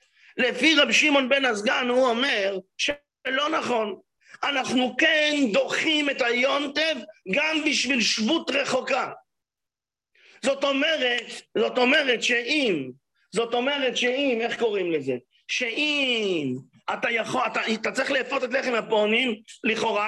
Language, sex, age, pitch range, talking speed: English, male, 50-69, 215-275 Hz, 120 wpm